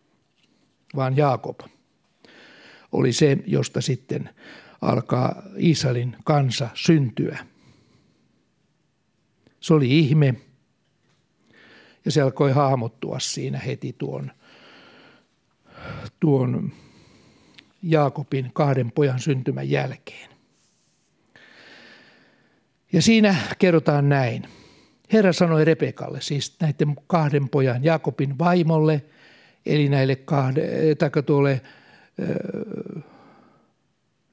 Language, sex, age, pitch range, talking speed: Finnish, male, 60-79, 135-160 Hz, 80 wpm